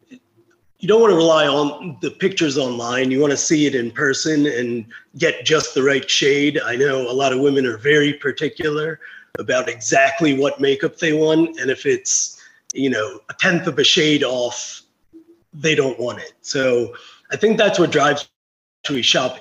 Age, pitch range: 30-49, 135-170 Hz